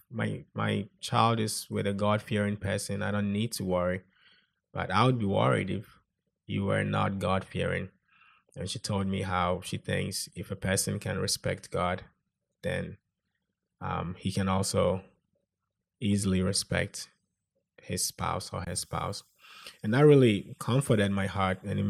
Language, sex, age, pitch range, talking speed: English, male, 20-39, 95-115 Hz, 155 wpm